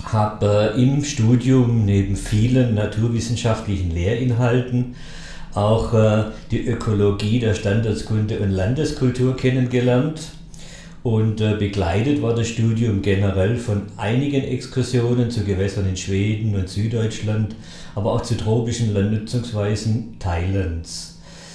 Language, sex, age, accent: German, male, 50-69, German